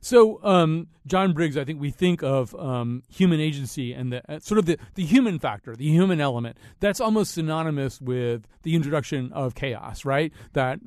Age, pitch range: 40-59, 120-160 Hz